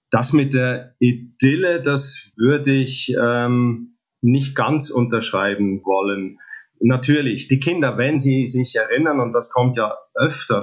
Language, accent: German, German